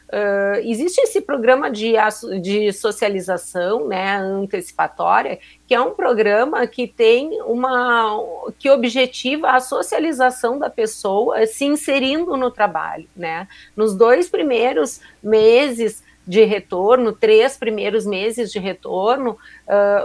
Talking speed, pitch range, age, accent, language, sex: 110 wpm, 205-260 Hz, 50-69, Brazilian, Portuguese, female